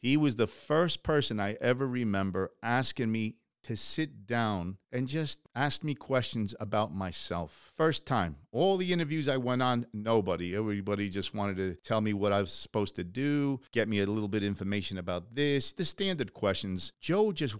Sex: male